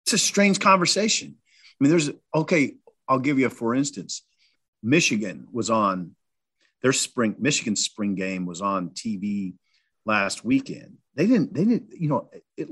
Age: 40-59